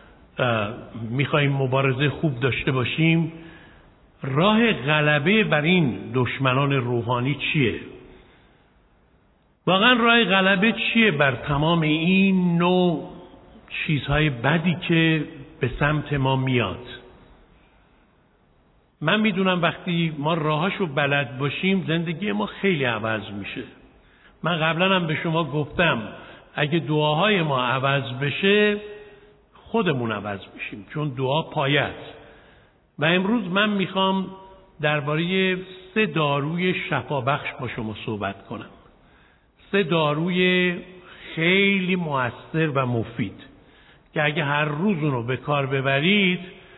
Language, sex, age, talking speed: Persian, male, 60-79, 110 wpm